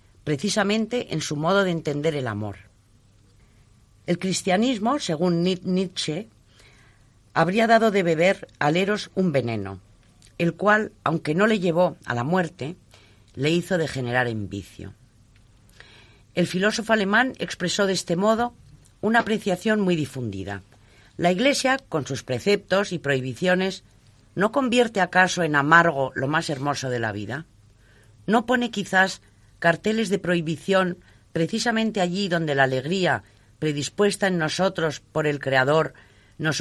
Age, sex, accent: 40-59, female, Spanish